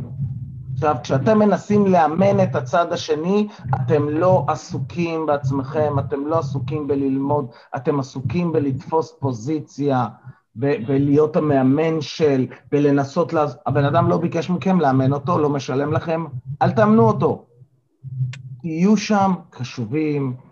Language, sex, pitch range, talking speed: Hebrew, male, 130-165 Hz, 120 wpm